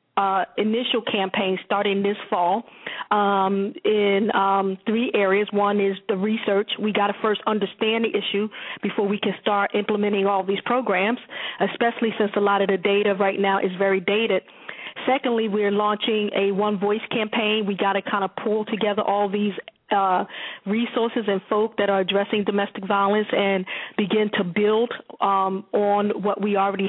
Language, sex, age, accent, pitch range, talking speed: English, female, 40-59, American, 200-220 Hz, 165 wpm